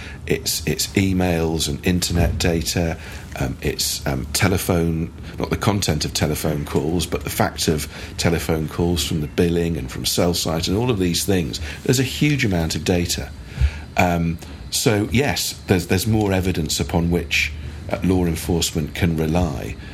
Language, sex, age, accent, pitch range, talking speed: English, male, 50-69, British, 80-95 Hz, 160 wpm